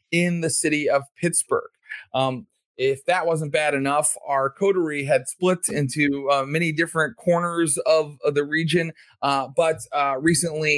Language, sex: English, male